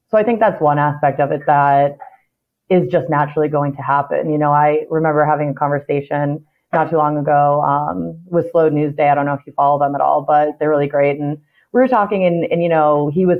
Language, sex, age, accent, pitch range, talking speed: English, female, 30-49, American, 145-175 Hz, 235 wpm